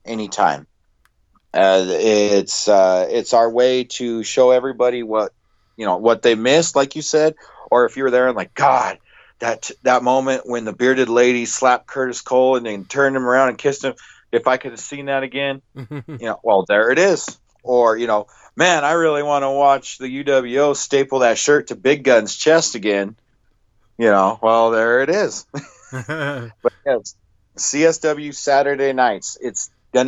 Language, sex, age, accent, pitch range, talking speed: English, male, 40-59, American, 105-135 Hz, 180 wpm